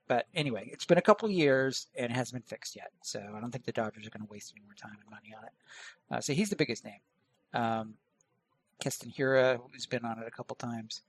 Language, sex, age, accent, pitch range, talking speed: English, male, 40-59, American, 115-140 Hz, 260 wpm